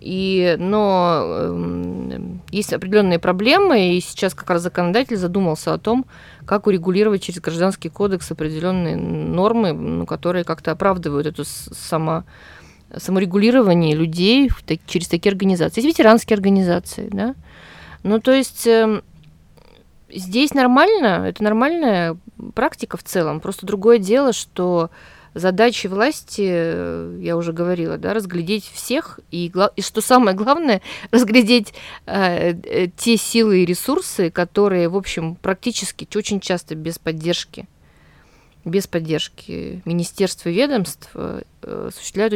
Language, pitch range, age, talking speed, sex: Russian, 170-220 Hz, 20-39, 125 wpm, female